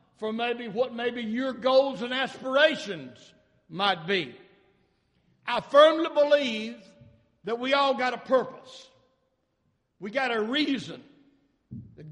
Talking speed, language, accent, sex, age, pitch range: 120 wpm, English, American, male, 60-79, 225-295 Hz